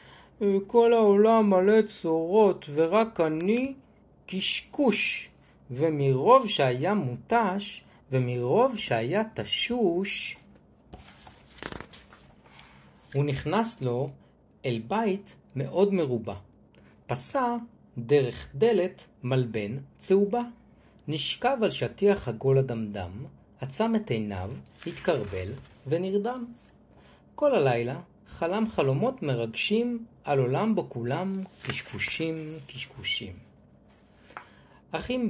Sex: male